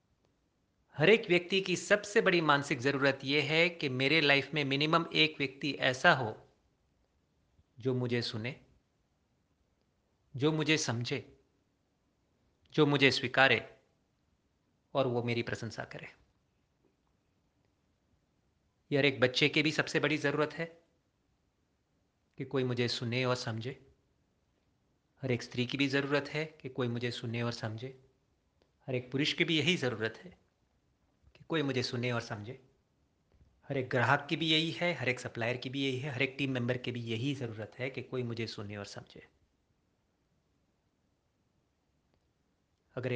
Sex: male